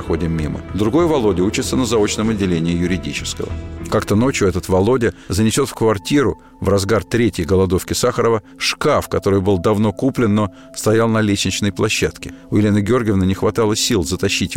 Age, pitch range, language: 50-69, 90-110 Hz, Russian